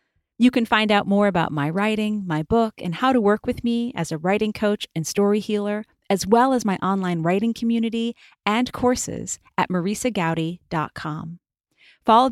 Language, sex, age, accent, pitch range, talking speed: English, female, 30-49, American, 165-220 Hz, 170 wpm